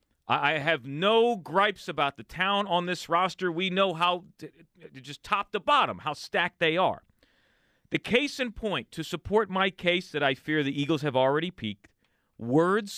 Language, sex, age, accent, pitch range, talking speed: English, male, 40-59, American, 125-180 Hz, 180 wpm